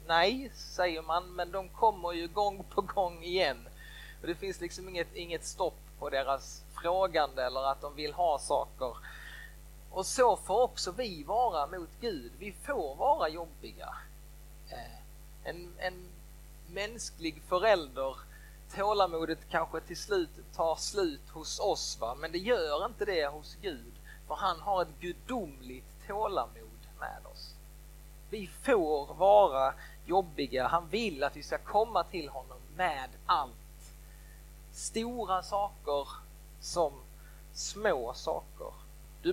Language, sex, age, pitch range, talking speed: Swedish, male, 30-49, 150-200 Hz, 130 wpm